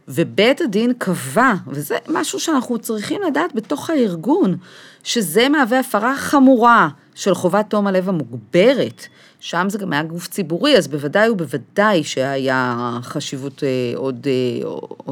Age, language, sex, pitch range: 40-59, Hebrew, female, 140-205 Hz